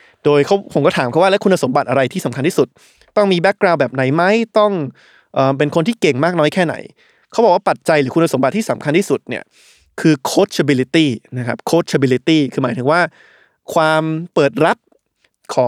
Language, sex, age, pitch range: Thai, male, 20-39, 135-175 Hz